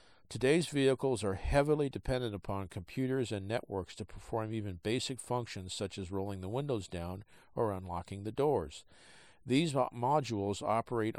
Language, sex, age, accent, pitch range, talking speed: English, male, 50-69, American, 100-125 Hz, 145 wpm